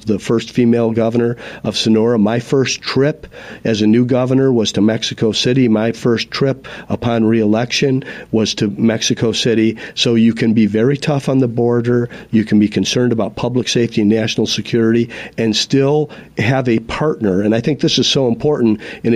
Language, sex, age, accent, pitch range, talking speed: English, male, 50-69, American, 110-125 Hz, 180 wpm